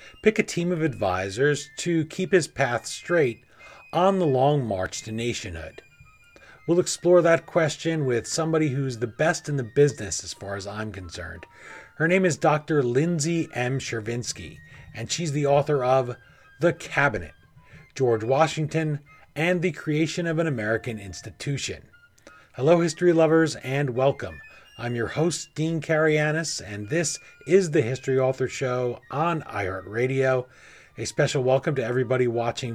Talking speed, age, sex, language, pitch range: 150 wpm, 30-49, male, English, 120-160 Hz